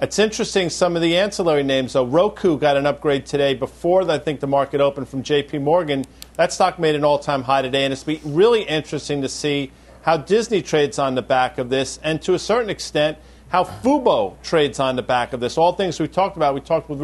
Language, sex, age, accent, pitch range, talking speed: English, male, 50-69, American, 140-175 Hz, 240 wpm